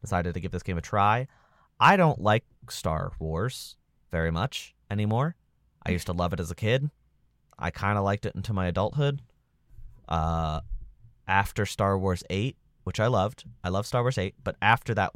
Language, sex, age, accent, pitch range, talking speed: English, male, 30-49, American, 85-115 Hz, 185 wpm